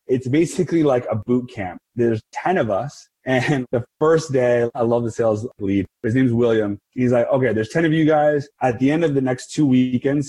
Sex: male